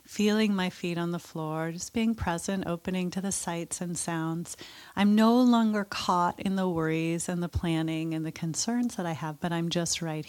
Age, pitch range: 30-49, 165-210 Hz